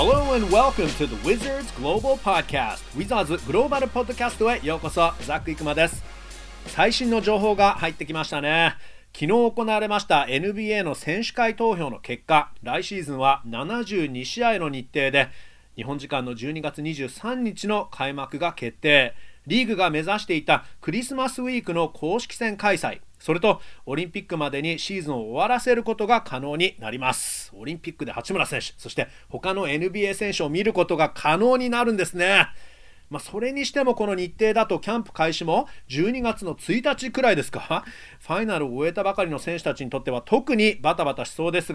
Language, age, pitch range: Japanese, 40-59, 150-225 Hz